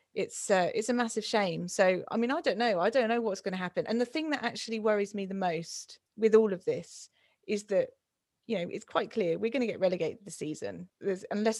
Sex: female